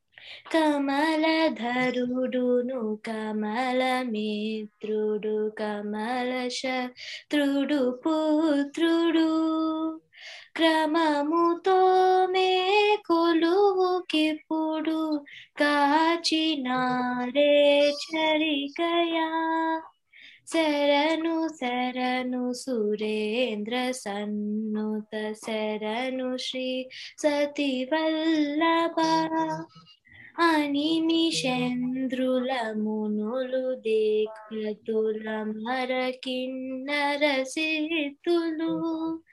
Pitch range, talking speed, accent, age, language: 250-320 Hz, 35 wpm, native, 20-39, Telugu